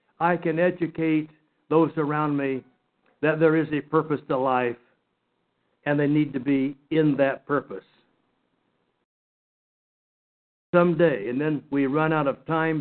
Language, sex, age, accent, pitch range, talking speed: English, male, 60-79, American, 155-210 Hz, 135 wpm